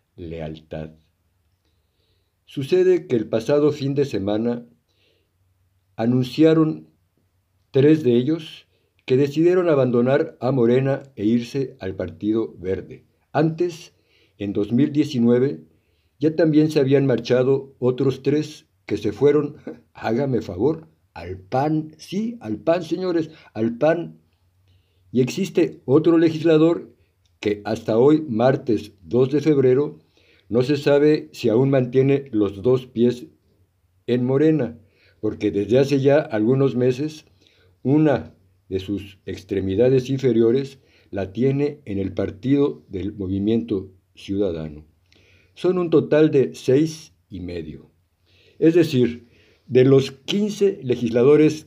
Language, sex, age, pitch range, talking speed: Spanish, male, 60-79, 95-145 Hz, 115 wpm